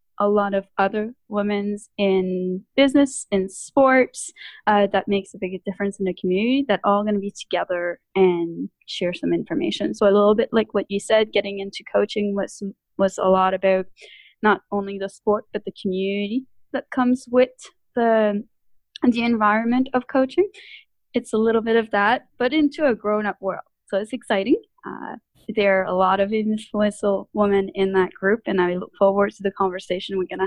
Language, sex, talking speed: English, female, 185 wpm